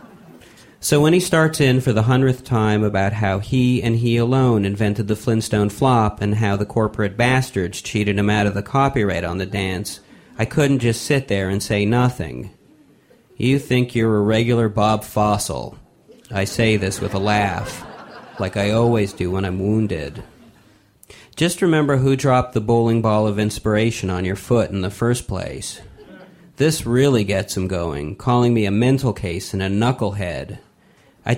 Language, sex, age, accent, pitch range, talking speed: English, male, 40-59, American, 100-125 Hz, 175 wpm